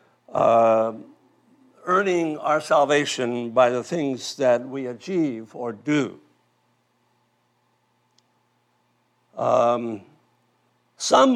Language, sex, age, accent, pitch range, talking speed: English, male, 60-79, American, 120-165 Hz, 75 wpm